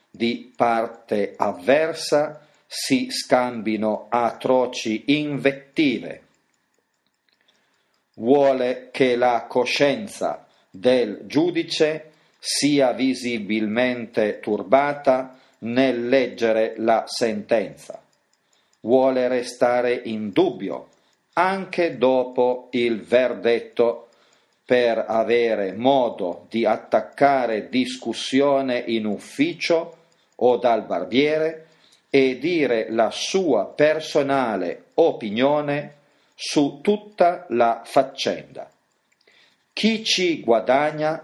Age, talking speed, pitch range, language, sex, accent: 40-59, 75 wpm, 120-155 Hz, Italian, male, native